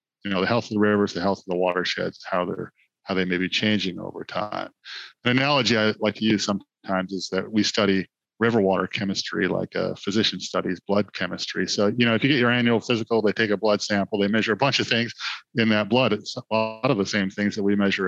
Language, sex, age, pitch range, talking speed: English, male, 40-59, 95-115 Hz, 245 wpm